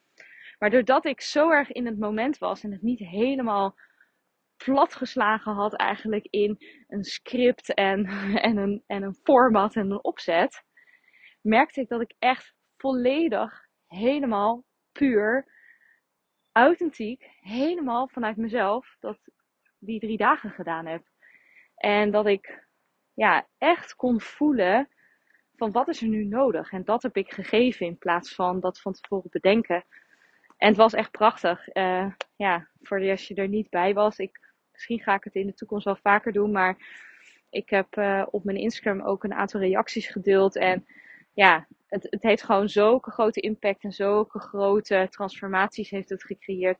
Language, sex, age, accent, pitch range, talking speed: Dutch, female, 20-39, Dutch, 195-240 Hz, 160 wpm